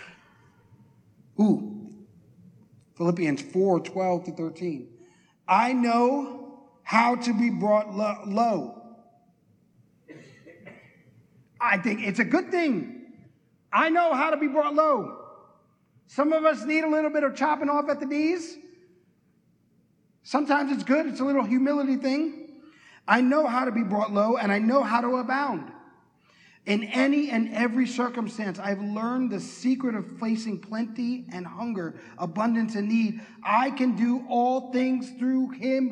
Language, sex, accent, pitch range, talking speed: English, male, American, 180-260 Hz, 140 wpm